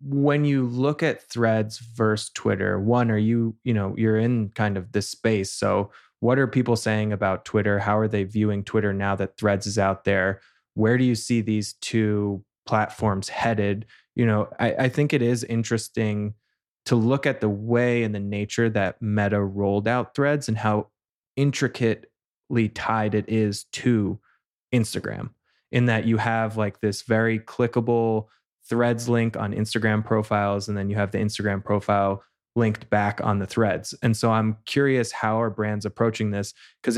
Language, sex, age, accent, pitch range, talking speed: English, male, 20-39, American, 105-120 Hz, 175 wpm